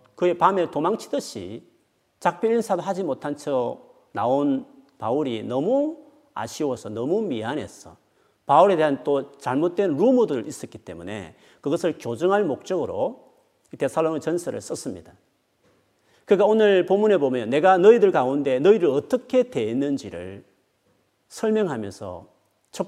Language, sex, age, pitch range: Korean, male, 40-59, 125-210 Hz